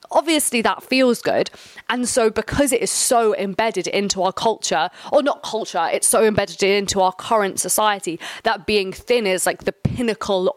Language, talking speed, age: English, 175 wpm, 20-39